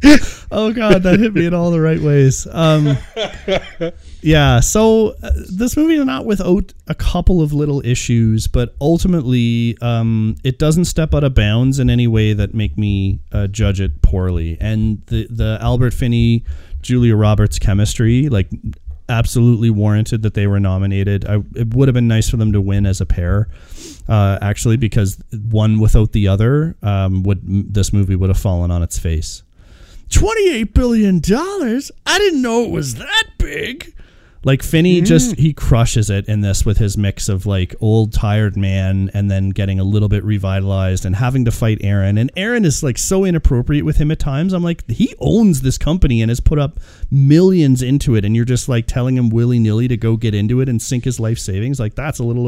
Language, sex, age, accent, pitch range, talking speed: English, male, 30-49, American, 100-145 Hz, 195 wpm